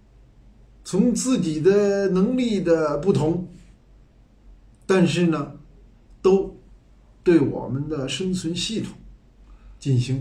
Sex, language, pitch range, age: male, Chinese, 120-185 Hz, 50-69